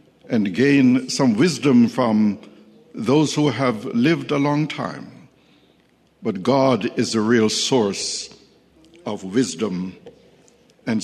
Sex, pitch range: male, 115-165 Hz